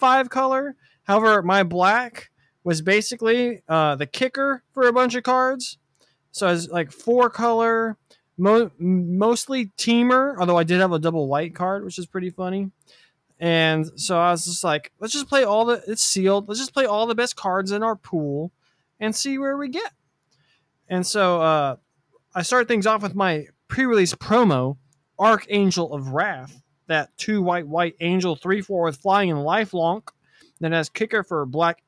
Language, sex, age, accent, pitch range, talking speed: English, male, 20-39, American, 155-220 Hz, 175 wpm